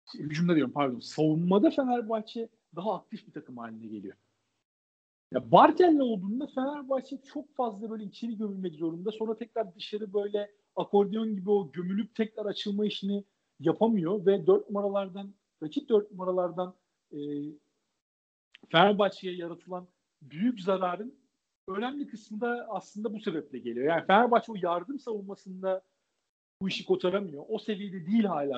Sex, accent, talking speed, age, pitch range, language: male, native, 130 wpm, 50-69, 170-220 Hz, Turkish